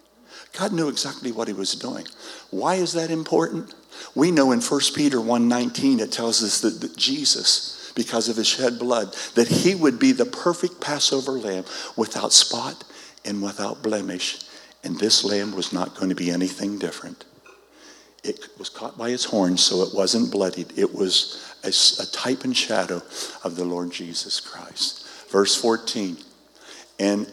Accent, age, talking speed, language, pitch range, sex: American, 60-79, 160 wpm, English, 95-135 Hz, male